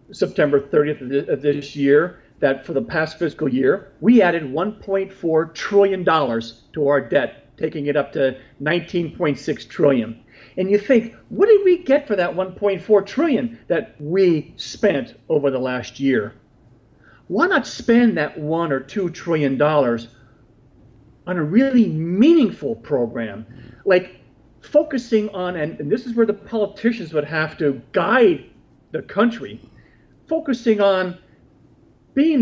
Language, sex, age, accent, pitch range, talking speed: English, male, 50-69, American, 140-195 Hz, 135 wpm